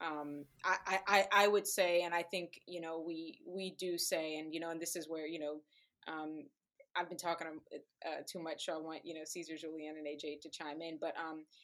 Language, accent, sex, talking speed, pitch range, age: English, American, female, 230 wpm, 165-190 Hz, 20-39